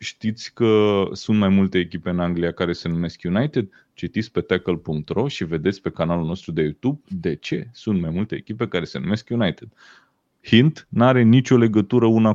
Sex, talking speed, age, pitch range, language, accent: male, 180 wpm, 30-49, 100-140 Hz, Romanian, native